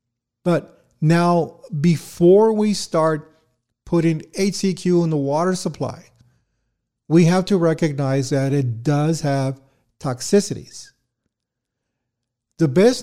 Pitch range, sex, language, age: 130-170 Hz, male, English, 50-69